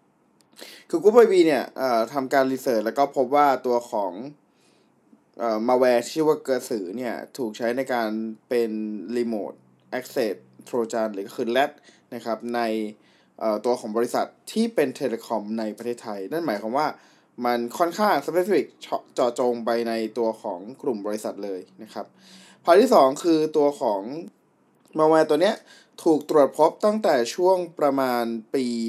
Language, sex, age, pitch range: Thai, male, 20-39, 115-150 Hz